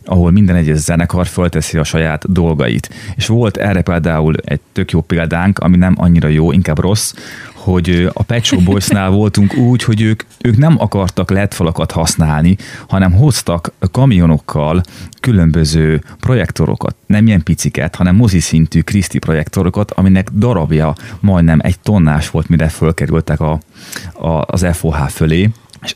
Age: 30-49